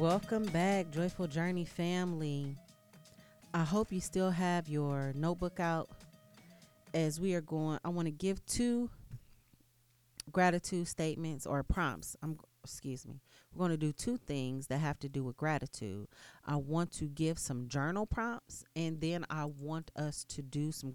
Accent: American